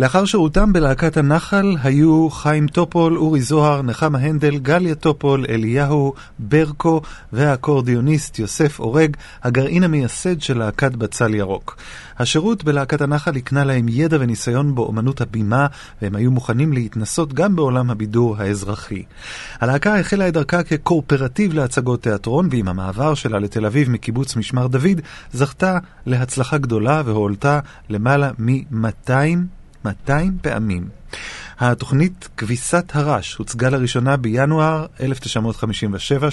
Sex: male